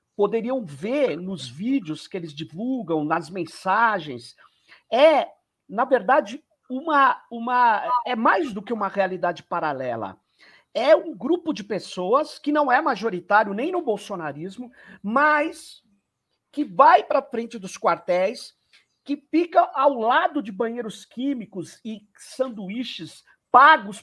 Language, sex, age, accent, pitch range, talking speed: Portuguese, male, 50-69, Brazilian, 200-295 Hz, 125 wpm